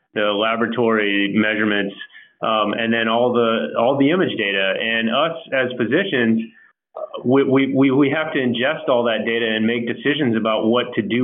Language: English